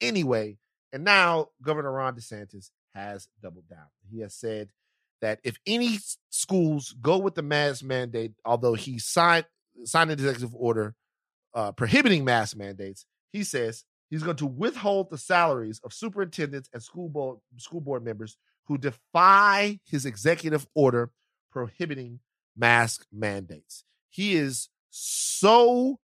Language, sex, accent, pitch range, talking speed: English, male, American, 115-165 Hz, 135 wpm